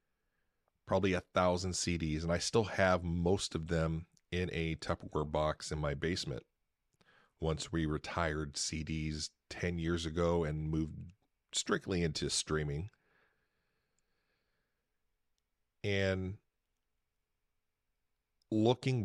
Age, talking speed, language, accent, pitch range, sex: 40-59, 100 wpm, English, American, 80-95 Hz, male